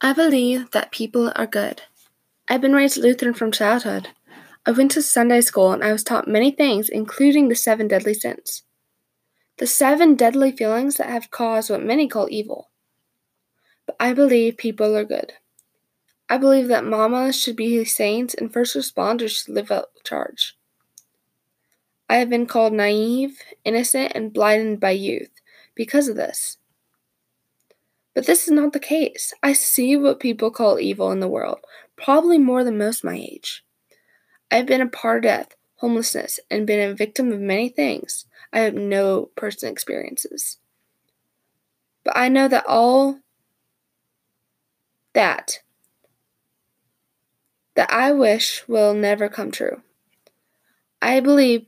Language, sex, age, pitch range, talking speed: English, female, 10-29, 215-270 Hz, 150 wpm